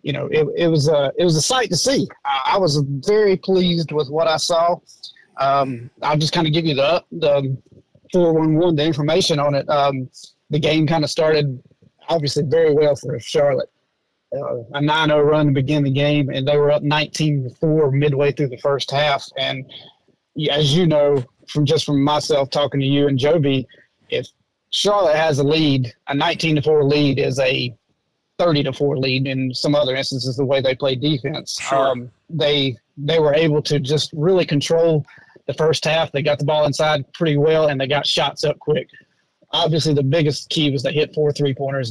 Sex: male